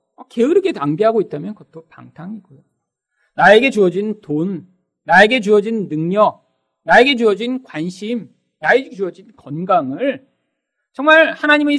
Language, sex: Korean, male